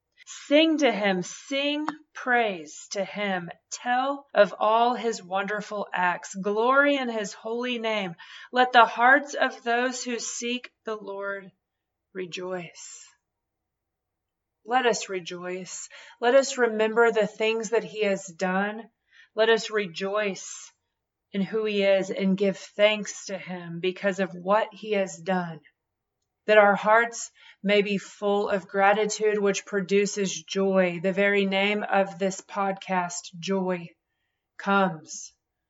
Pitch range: 185-220 Hz